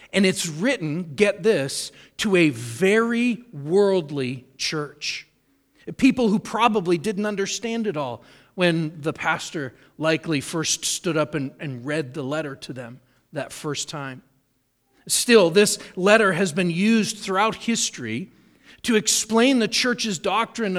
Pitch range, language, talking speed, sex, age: 160-215 Hz, English, 135 wpm, male, 40-59